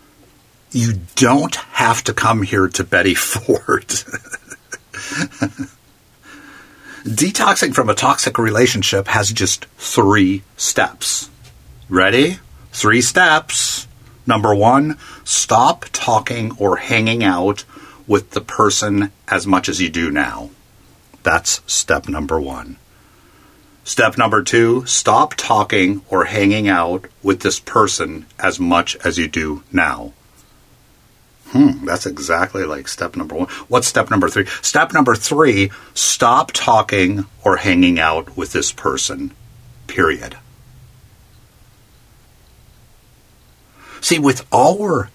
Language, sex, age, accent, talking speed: English, male, 50-69, American, 110 wpm